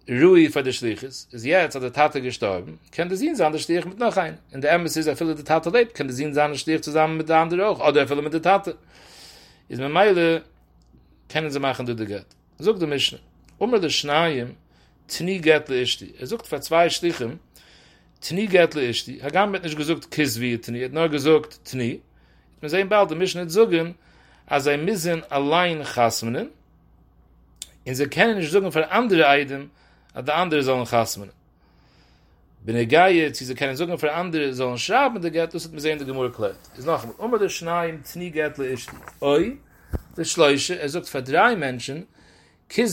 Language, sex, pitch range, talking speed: English, male, 125-170 Hz, 115 wpm